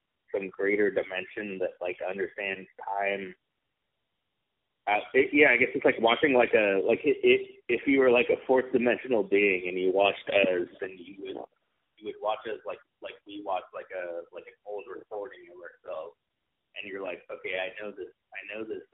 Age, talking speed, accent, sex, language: 30-49, 190 wpm, American, male, English